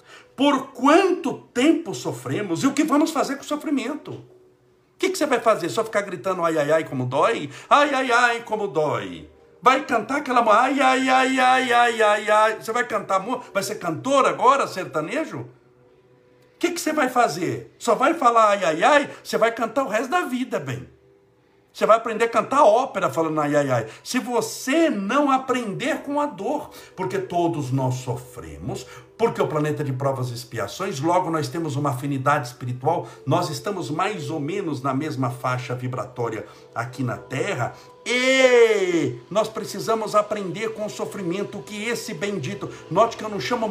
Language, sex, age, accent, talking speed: Portuguese, male, 60-79, Brazilian, 180 wpm